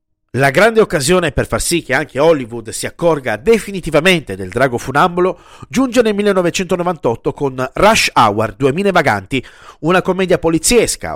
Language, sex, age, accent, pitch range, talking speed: Italian, male, 50-69, native, 130-195 Hz, 140 wpm